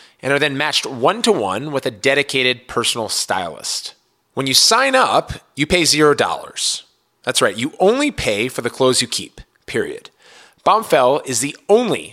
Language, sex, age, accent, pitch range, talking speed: English, male, 30-49, American, 125-165 Hz, 165 wpm